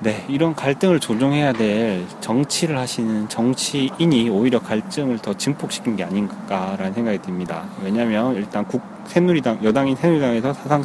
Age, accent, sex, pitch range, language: 30-49, native, male, 120-175 Hz, Korean